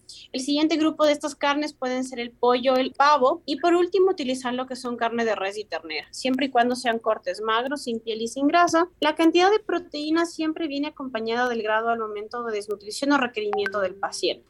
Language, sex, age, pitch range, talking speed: Spanish, female, 20-39, 230-290 Hz, 215 wpm